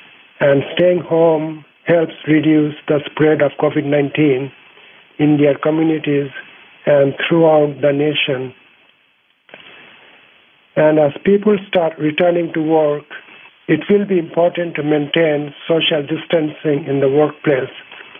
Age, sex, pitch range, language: 50-69, male, 150-165 Hz, English